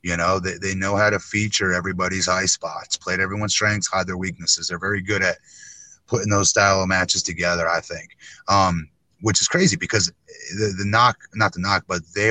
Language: English